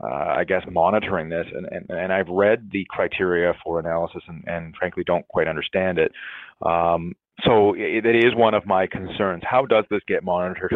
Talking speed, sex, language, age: 195 wpm, male, English, 30-49